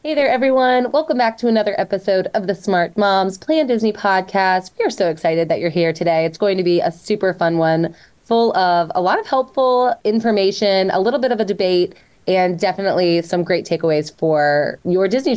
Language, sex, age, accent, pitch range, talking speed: English, female, 20-39, American, 180-235 Hz, 205 wpm